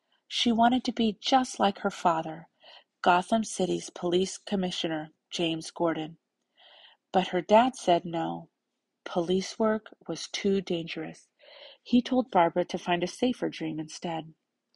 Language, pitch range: English, 170-220 Hz